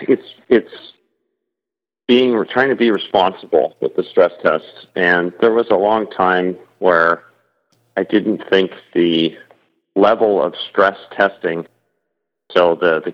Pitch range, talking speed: 85-100 Hz, 135 wpm